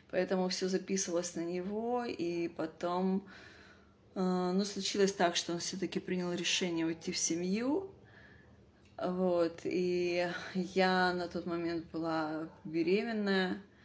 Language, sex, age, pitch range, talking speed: Russian, female, 20-39, 165-195 Hz, 115 wpm